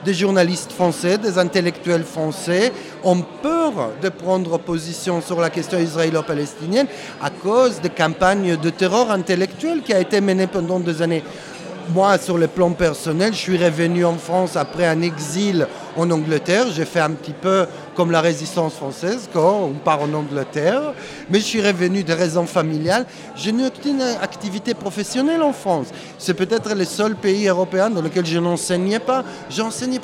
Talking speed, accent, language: 170 wpm, French, English